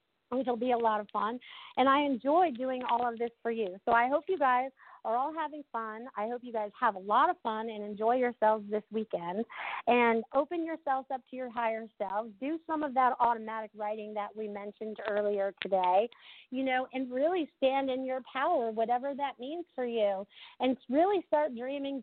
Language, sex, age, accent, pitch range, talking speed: English, female, 40-59, American, 225-280 Hz, 200 wpm